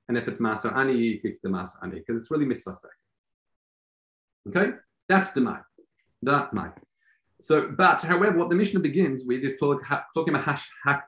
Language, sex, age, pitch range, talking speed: English, male, 30-49, 115-160 Hz, 150 wpm